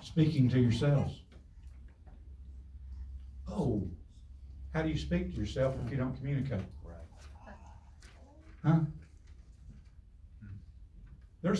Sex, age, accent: male, 60-79, American